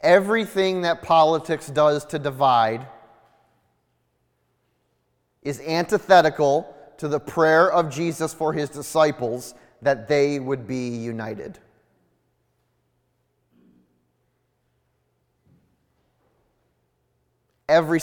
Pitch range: 145-185 Hz